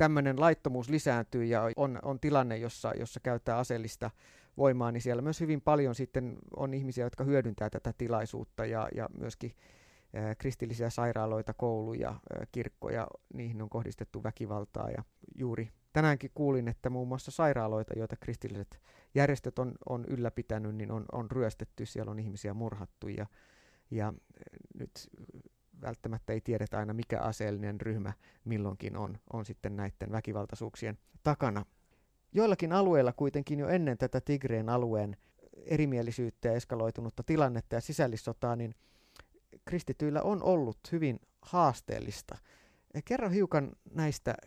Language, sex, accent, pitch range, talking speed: Finnish, male, native, 110-135 Hz, 135 wpm